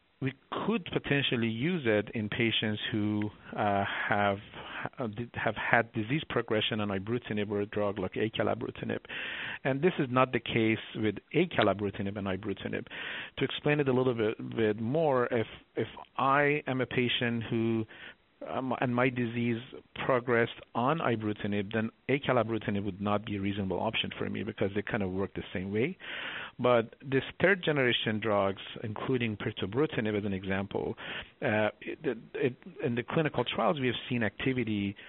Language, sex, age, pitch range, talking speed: English, male, 50-69, 105-125 Hz, 155 wpm